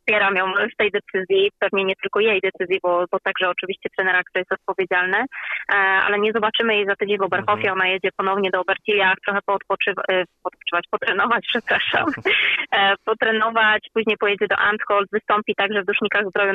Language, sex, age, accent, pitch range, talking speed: Polish, female, 20-39, native, 190-210 Hz, 165 wpm